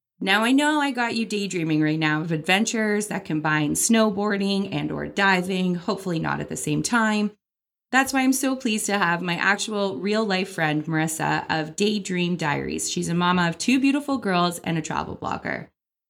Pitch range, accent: 165-215 Hz, American